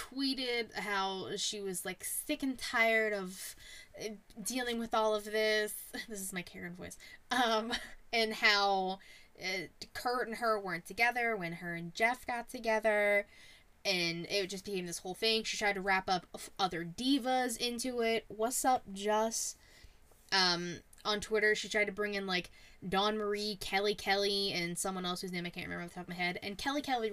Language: English